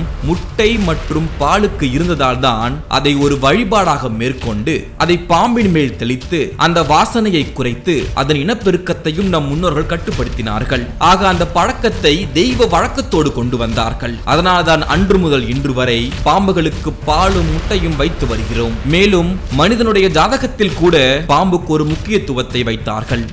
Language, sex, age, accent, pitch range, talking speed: Tamil, male, 20-39, native, 125-175 Hz, 120 wpm